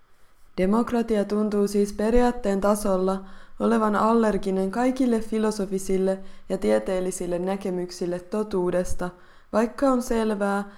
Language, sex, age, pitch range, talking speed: Finnish, female, 20-39, 185-215 Hz, 90 wpm